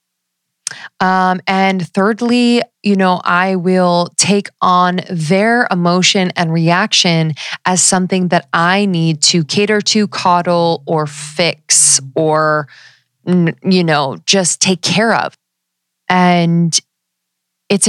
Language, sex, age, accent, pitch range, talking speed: English, female, 20-39, American, 155-190 Hz, 110 wpm